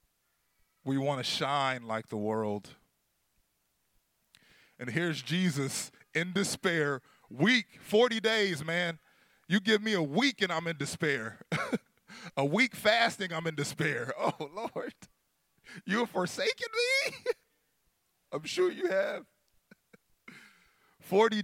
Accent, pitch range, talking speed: American, 120-200 Hz, 120 wpm